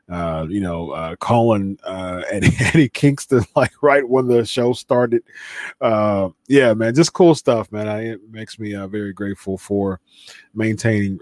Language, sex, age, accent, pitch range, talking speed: English, male, 30-49, American, 105-145 Hz, 160 wpm